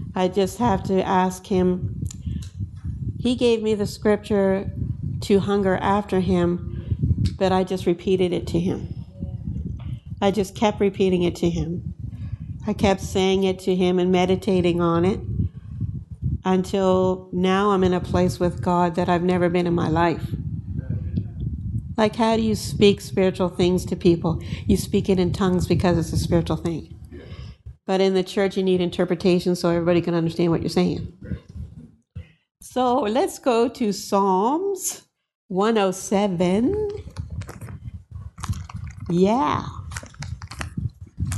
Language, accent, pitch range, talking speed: English, American, 120-195 Hz, 135 wpm